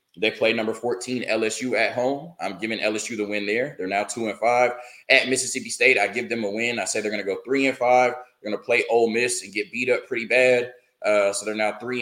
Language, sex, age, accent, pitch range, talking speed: English, male, 20-39, American, 105-130 Hz, 260 wpm